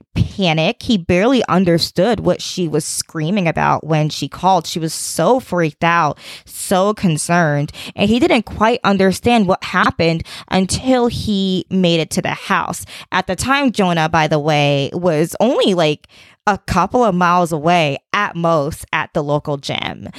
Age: 20-39